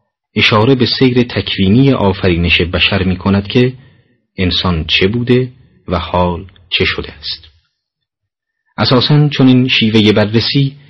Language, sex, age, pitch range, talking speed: Persian, male, 40-59, 90-115 Hz, 115 wpm